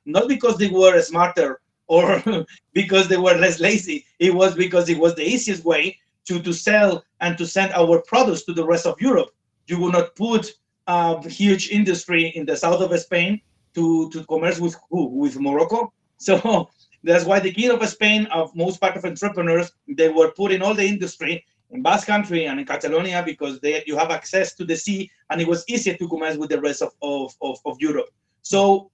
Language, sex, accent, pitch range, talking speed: Swedish, male, Mexican, 165-205 Hz, 205 wpm